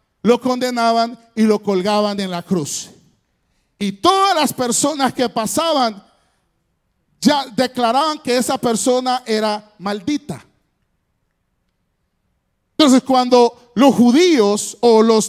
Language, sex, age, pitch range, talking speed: Spanish, male, 40-59, 230-295 Hz, 105 wpm